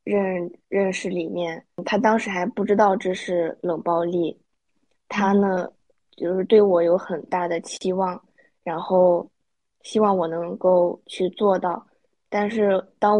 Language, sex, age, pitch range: Chinese, female, 20-39, 170-190 Hz